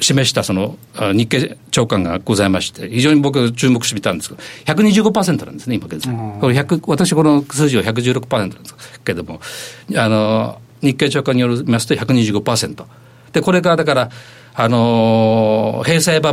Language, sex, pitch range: Japanese, male, 110-150 Hz